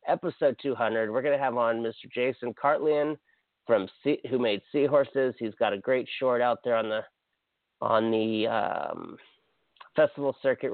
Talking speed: 155 wpm